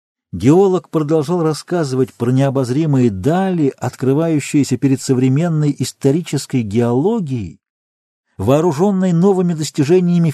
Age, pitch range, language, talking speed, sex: 40-59, 125-160 Hz, Russian, 80 wpm, male